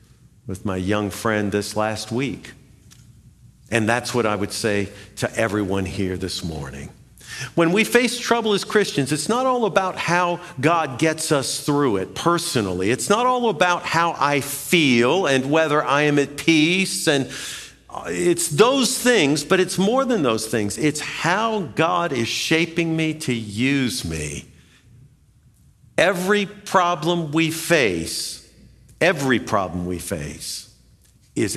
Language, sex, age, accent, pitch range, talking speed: English, male, 50-69, American, 115-165 Hz, 145 wpm